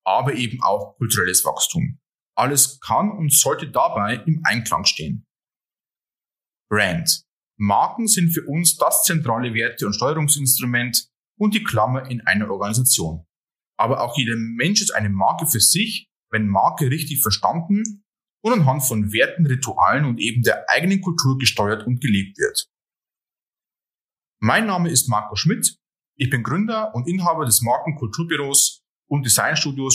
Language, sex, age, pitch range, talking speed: German, male, 30-49, 120-175 Hz, 140 wpm